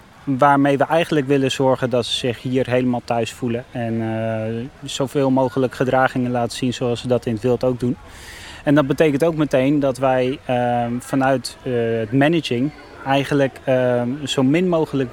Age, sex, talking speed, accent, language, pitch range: 20-39, male, 175 wpm, Dutch, Dutch, 125-150 Hz